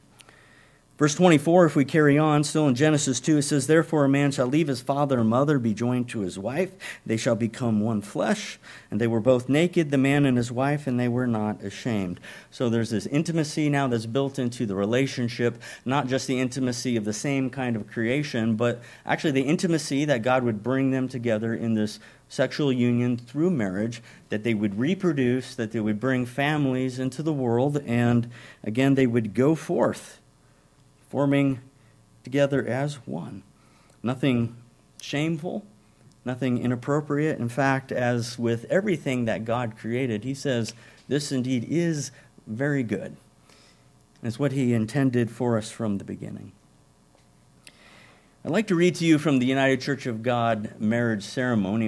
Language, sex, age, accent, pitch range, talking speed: English, male, 50-69, American, 115-140 Hz, 170 wpm